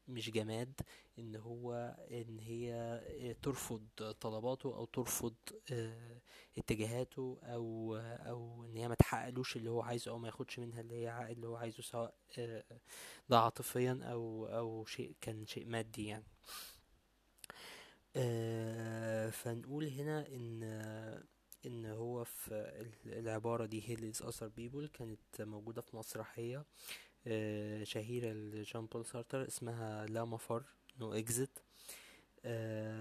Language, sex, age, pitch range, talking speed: Arabic, male, 20-39, 110-125 Hz, 110 wpm